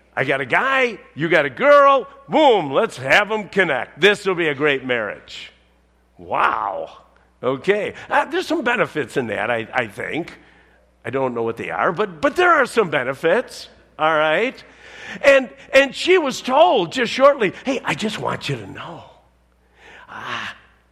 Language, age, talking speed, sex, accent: English, 50-69, 170 wpm, male, American